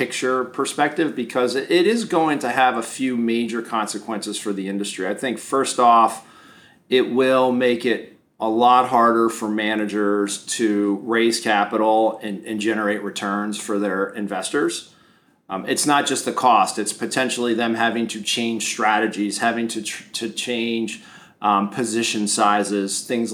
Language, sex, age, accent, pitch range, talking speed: English, male, 40-59, American, 105-120 Hz, 155 wpm